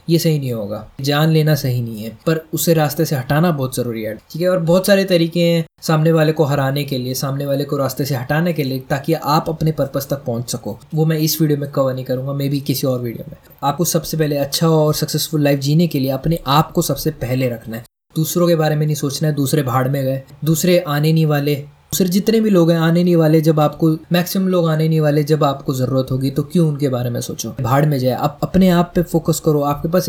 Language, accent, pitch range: Hindi, native, 140-170 Hz